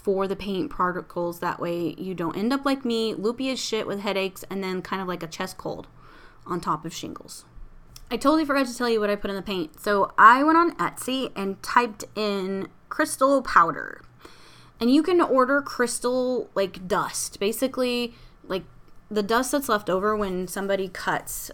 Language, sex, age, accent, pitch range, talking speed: English, female, 20-39, American, 180-235 Hz, 190 wpm